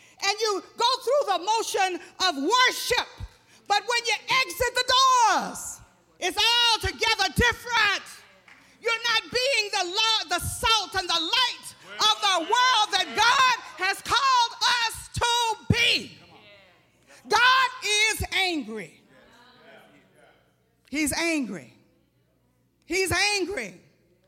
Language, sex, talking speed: English, female, 105 wpm